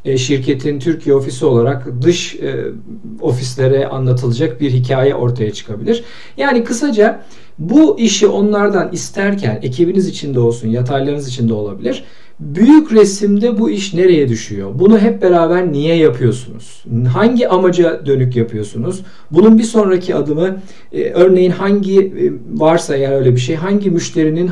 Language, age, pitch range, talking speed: Turkish, 50-69, 125-190 Hz, 125 wpm